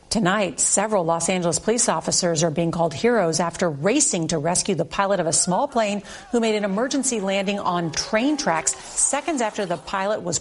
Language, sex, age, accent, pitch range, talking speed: English, female, 50-69, American, 175-220 Hz, 190 wpm